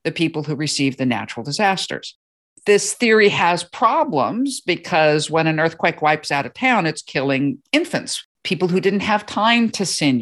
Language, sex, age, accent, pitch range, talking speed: English, female, 50-69, American, 150-195 Hz, 170 wpm